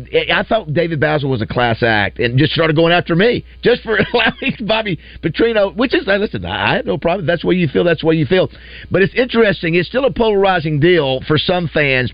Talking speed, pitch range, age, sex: 225 wpm, 140-180 Hz, 50-69, male